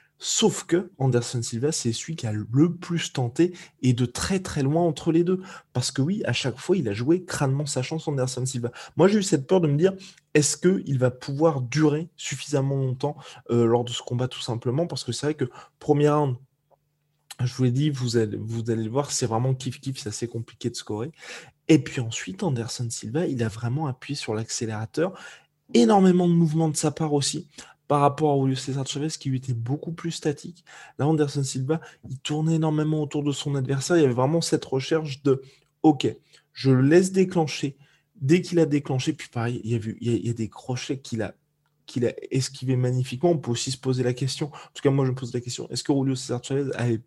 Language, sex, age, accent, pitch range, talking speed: French, male, 20-39, French, 125-155 Hz, 230 wpm